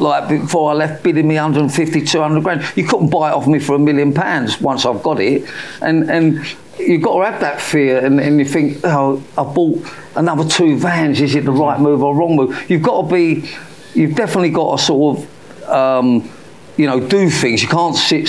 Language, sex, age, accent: English, male, 50-69, British